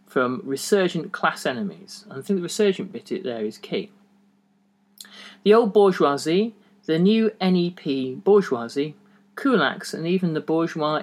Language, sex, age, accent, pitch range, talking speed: English, male, 40-59, British, 130-205 Hz, 135 wpm